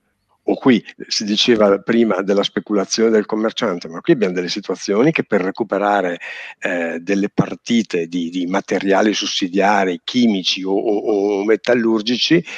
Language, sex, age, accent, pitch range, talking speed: Italian, male, 50-69, native, 95-110 Hz, 140 wpm